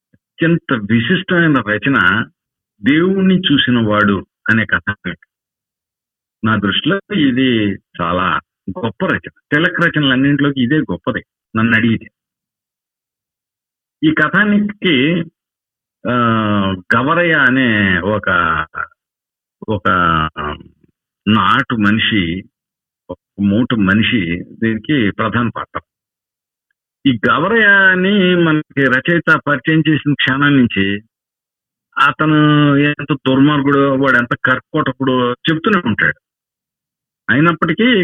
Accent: native